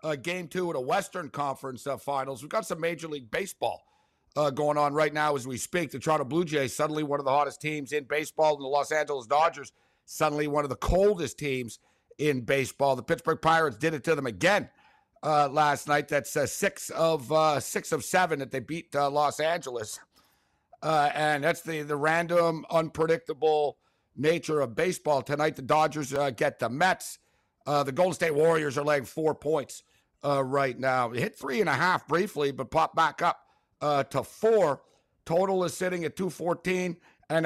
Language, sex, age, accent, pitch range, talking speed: English, male, 60-79, American, 145-165 Hz, 195 wpm